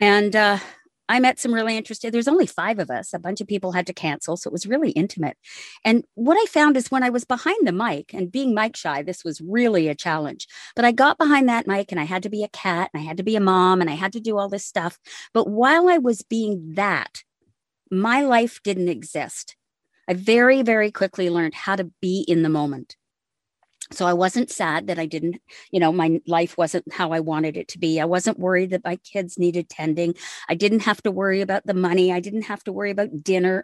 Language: English